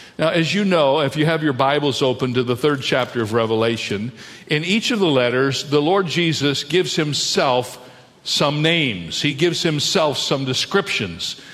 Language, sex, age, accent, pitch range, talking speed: English, male, 50-69, American, 130-165 Hz, 170 wpm